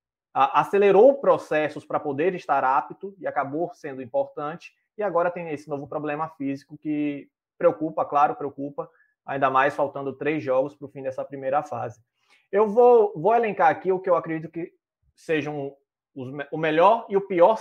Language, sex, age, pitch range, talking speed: Portuguese, male, 20-39, 135-175 Hz, 165 wpm